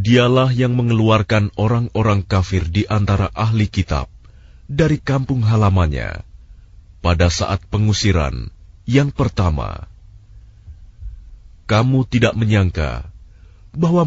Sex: male